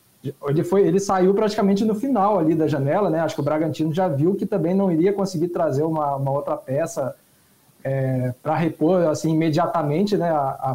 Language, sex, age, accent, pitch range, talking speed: Portuguese, male, 20-39, Brazilian, 145-180 Hz, 195 wpm